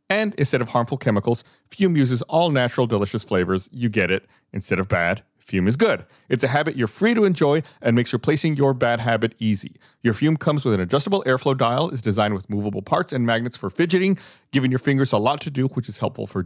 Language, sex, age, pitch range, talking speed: English, male, 30-49, 110-150 Hz, 225 wpm